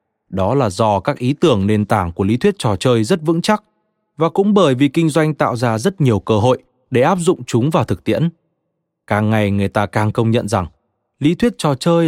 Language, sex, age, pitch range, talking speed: Vietnamese, male, 20-39, 110-160 Hz, 235 wpm